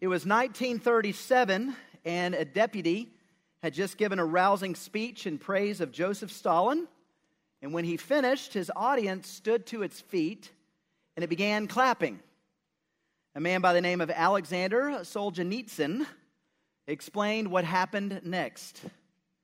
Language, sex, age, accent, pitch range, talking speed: English, male, 40-59, American, 175-230 Hz, 135 wpm